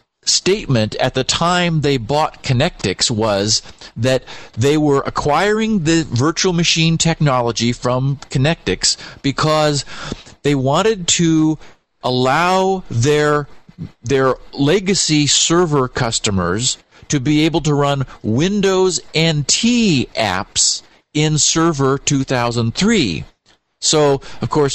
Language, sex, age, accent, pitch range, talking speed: English, male, 50-69, American, 120-155 Hz, 100 wpm